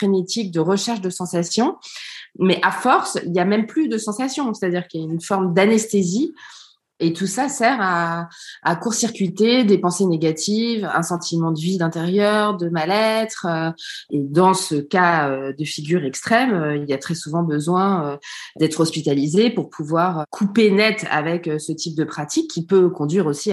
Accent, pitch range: French, 160-205 Hz